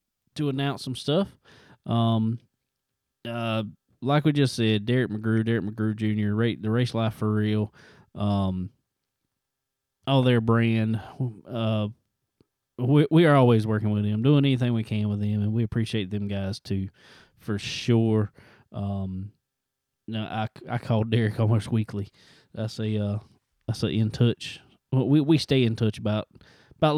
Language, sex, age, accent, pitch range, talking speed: English, male, 20-39, American, 105-125 Hz, 155 wpm